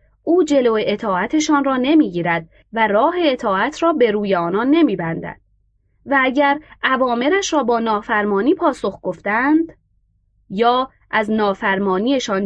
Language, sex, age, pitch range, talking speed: Persian, female, 20-39, 180-275 Hz, 115 wpm